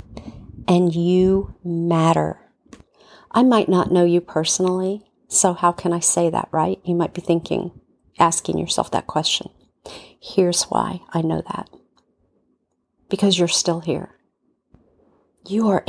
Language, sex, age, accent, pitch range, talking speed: English, female, 40-59, American, 170-195 Hz, 130 wpm